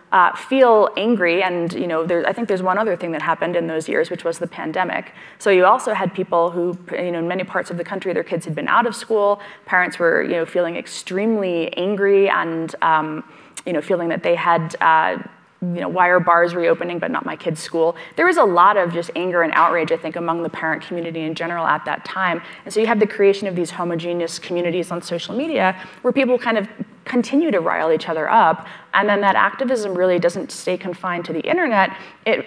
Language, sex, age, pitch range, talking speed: English, female, 20-39, 170-195 Hz, 225 wpm